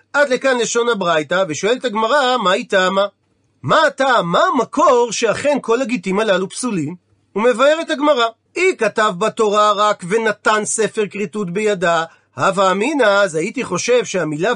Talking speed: 135 wpm